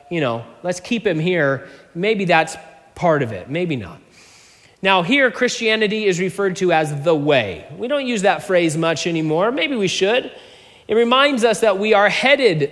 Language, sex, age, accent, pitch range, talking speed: English, male, 30-49, American, 150-205 Hz, 185 wpm